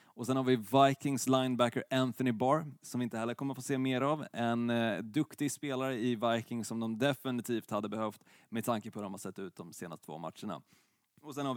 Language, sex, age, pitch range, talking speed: Swedish, male, 20-39, 110-130 Hz, 225 wpm